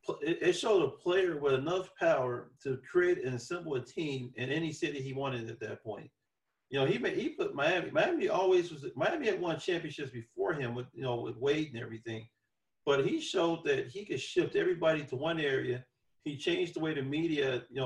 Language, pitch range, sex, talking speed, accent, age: English, 130-220 Hz, male, 205 wpm, American, 40-59